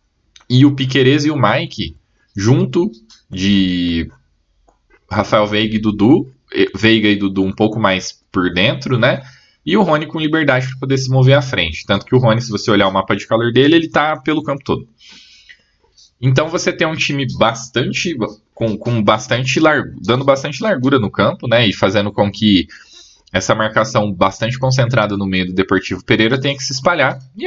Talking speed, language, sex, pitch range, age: 180 wpm, Portuguese, male, 105-135 Hz, 20-39